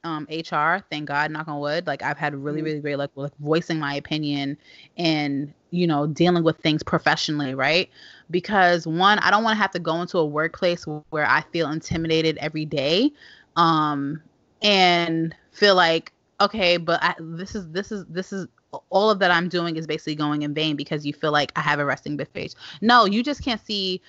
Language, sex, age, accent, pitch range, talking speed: English, female, 20-39, American, 155-195 Hz, 200 wpm